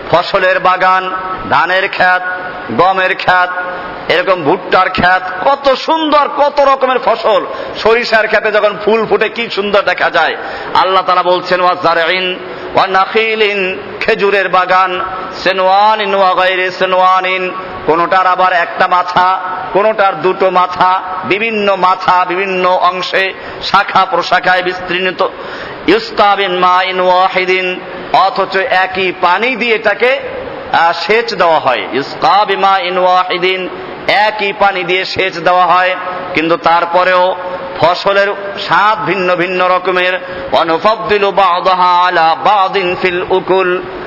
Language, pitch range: Bengali, 180-205 Hz